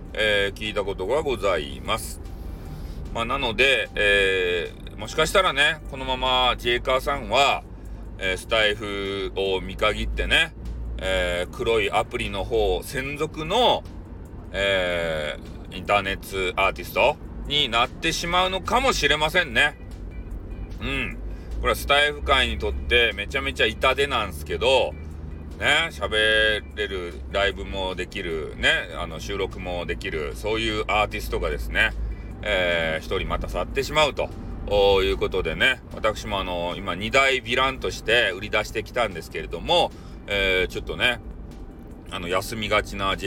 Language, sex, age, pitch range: Japanese, male, 40-59, 85-115 Hz